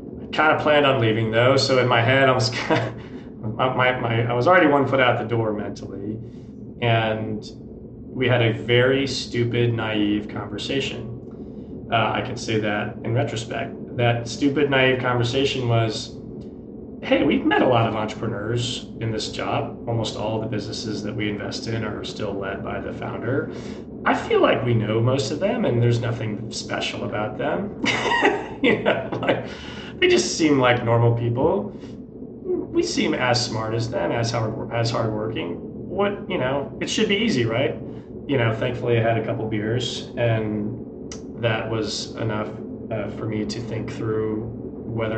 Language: English